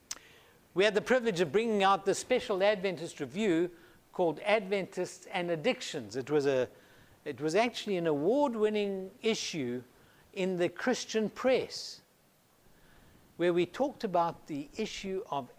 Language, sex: English, male